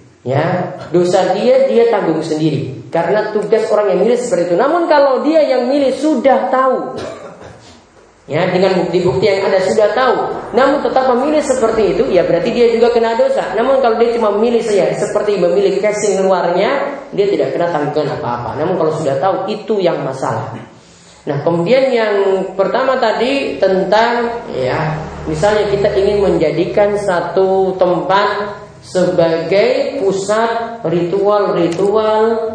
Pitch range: 185-260 Hz